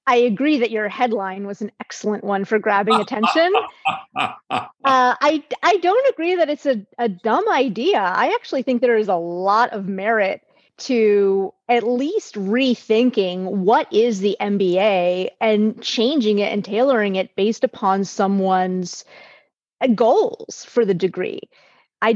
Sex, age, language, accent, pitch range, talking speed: female, 30-49, English, American, 200-255 Hz, 145 wpm